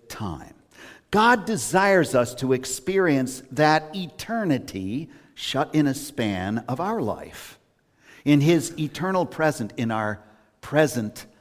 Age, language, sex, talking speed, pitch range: 50-69, English, male, 115 wpm, 115-175 Hz